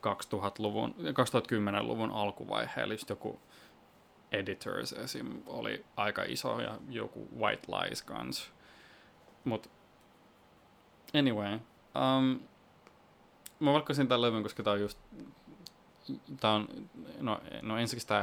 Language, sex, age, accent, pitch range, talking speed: Finnish, male, 20-39, native, 100-115 Hz, 110 wpm